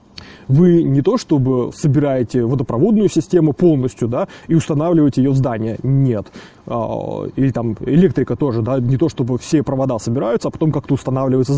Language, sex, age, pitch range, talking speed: Russian, male, 20-39, 120-145 Hz, 155 wpm